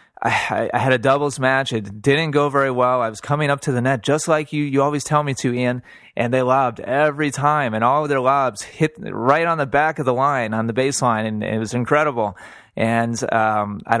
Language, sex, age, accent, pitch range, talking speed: English, male, 30-49, American, 115-140 Hz, 235 wpm